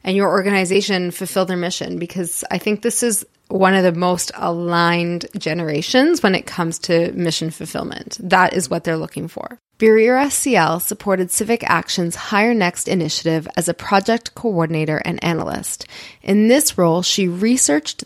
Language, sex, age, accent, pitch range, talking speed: English, female, 20-39, American, 170-220 Hz, 160 wpm